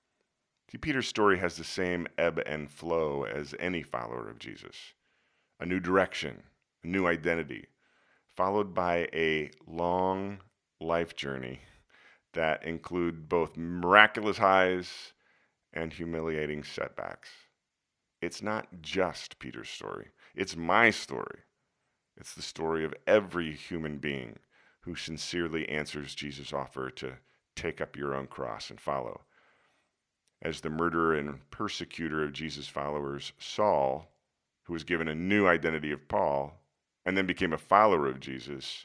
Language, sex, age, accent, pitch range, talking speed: English, male, 40-59, American, 70-90 Hz, 135 wpm